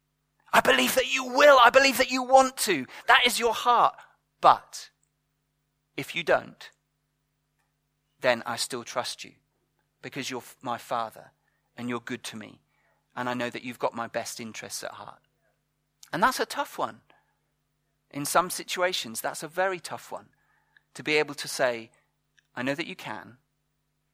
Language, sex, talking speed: English, male, 165 wpm